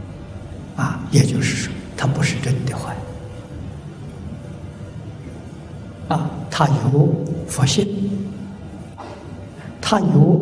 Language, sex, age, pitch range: Chinese, male, 60-79, 125-170 Hz